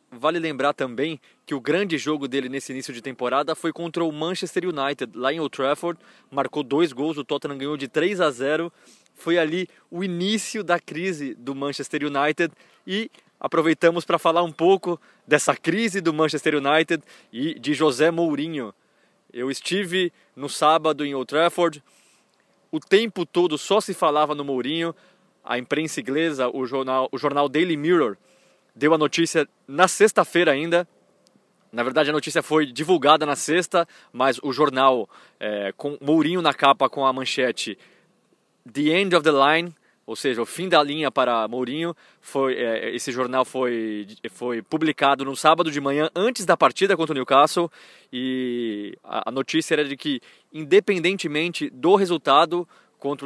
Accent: Brazilian